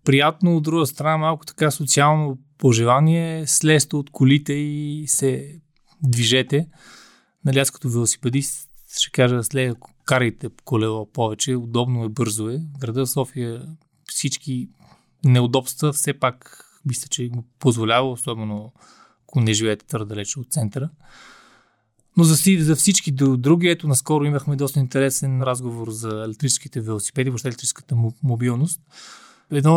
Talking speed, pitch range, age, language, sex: 125 wpm, 125-150 Hz, 20-39, Bulgarian, male